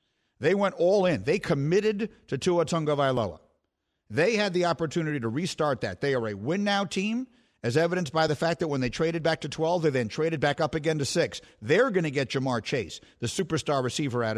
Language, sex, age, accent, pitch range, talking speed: English, male, 50-69, American, 125-170 Hz, 210 wpm